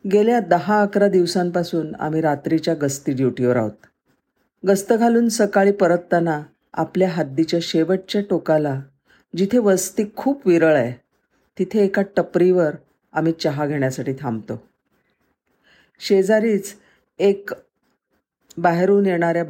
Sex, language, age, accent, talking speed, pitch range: female, Marathi, 50-69, native, 100 wpm, 140-190 Hz